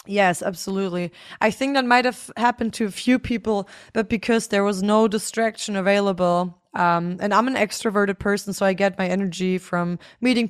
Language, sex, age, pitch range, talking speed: English, female, 20-39, 185-225 Hz, 185 wpm